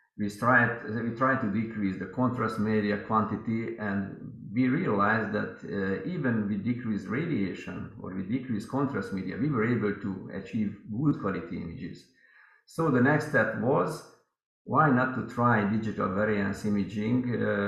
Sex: male